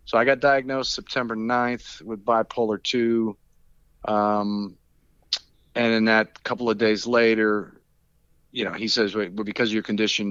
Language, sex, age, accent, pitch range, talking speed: English, male, 40-59, American, 100-115 Hz, 155 wpm